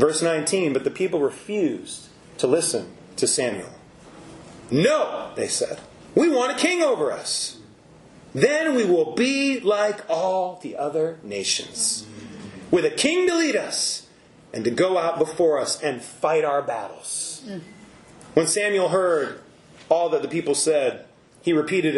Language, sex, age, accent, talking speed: English, male, 30-49, American, 145 wpm